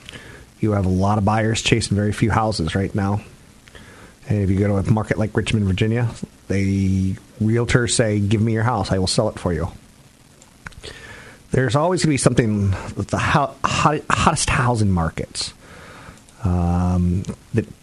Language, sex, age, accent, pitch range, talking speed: English, male, 40-59, American, 95-115 Hz, 160 wpm